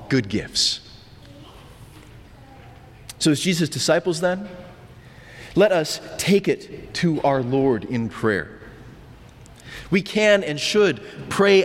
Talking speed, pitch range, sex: 110 wpm, 125-175 Hz, male